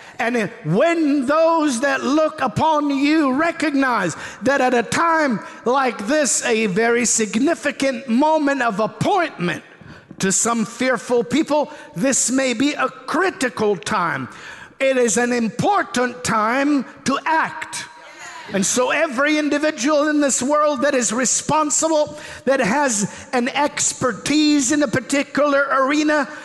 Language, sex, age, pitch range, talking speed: English, male, 50-69, 250-295 Hz, 125 wpm